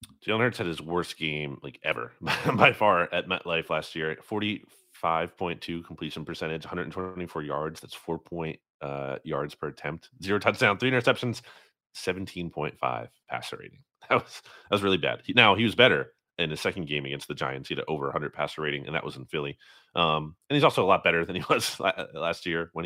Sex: male